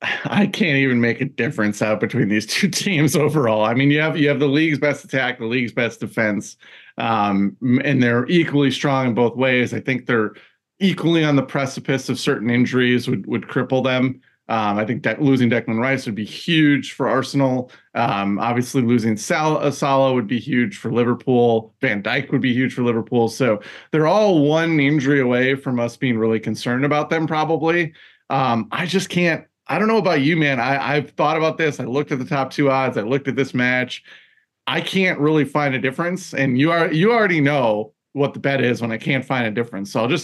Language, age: English, 30-49